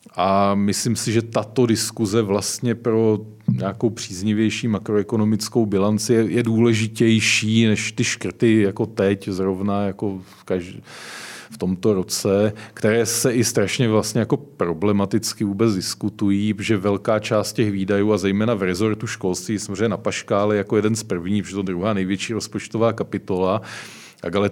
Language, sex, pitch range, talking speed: Czech, male, 95-110 Hz, 130 wpm